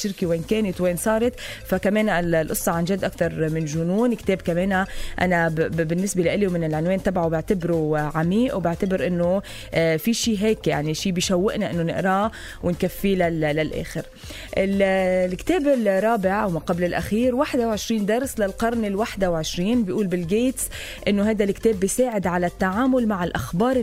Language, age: English, 20-39